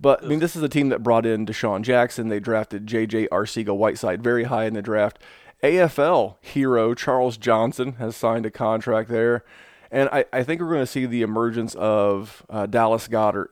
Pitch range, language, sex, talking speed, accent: 105-120 Hz, English, male, 195 wpm, American